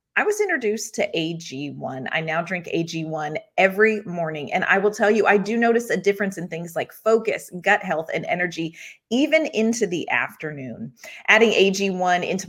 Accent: American